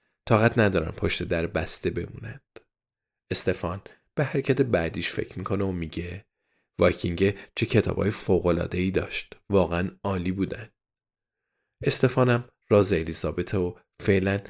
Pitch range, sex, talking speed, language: 95-115 Hz, male, 115 wpm, Persian